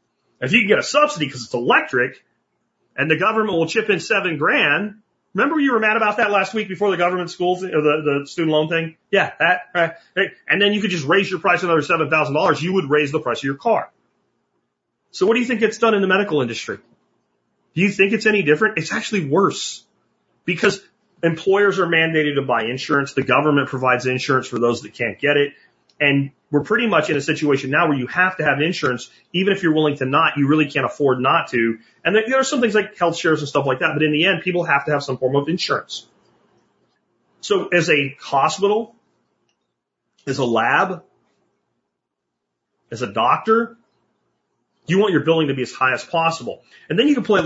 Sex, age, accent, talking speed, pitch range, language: male, 30-49, American, 215 wpm, 145-205 Hz, English